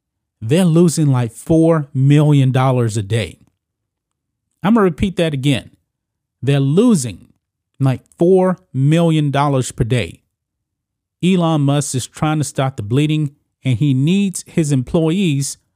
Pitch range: 120-160 Hz